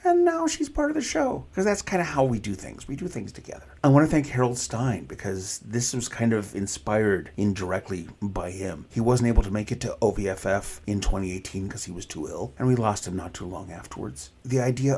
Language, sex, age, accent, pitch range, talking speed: English, male, 40-59, American, 105-140 Hz, 235 wpm